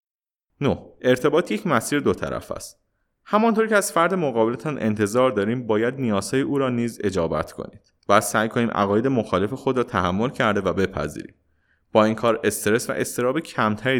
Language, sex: Persian, male